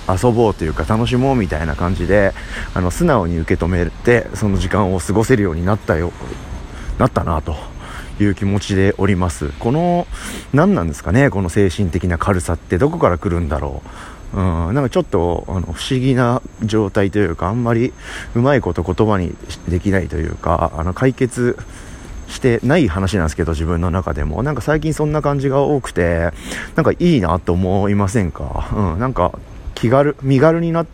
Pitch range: 85-125 Hz